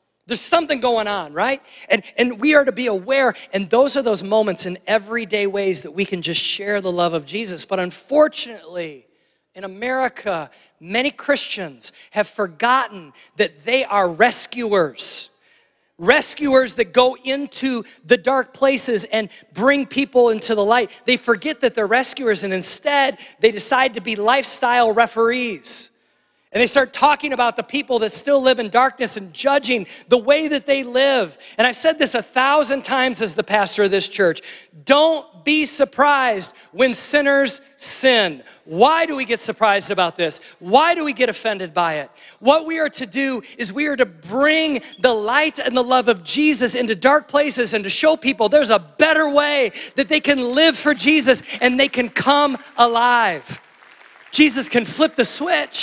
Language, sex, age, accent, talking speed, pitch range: English, male, 40-59, American, 175 wpm, 215-275 Hz